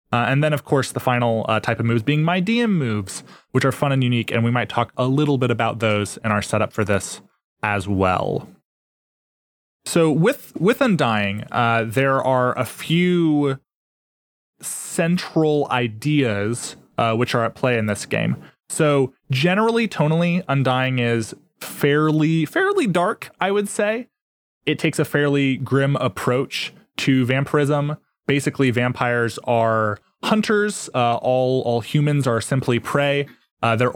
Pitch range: 115-150 Hz